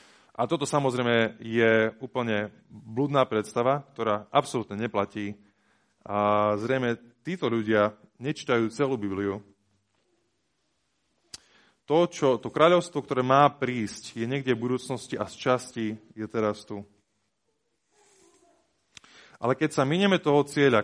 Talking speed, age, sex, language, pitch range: 115 wpm, 20-39, male, Slovak, 105-140 Hz